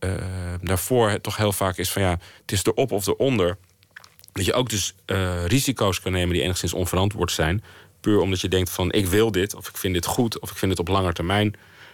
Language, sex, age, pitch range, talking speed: Dutch, male, 40-59, 85-95 Hz, 230 wpm